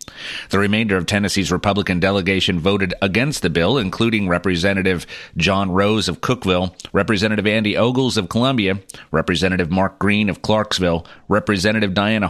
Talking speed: 135 wpm